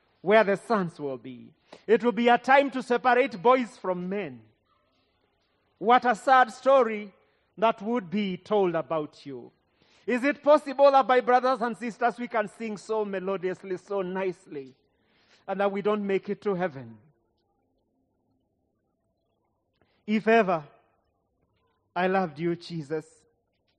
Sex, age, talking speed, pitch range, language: male, 40-59, 135 wpm, 170-250 Hz, English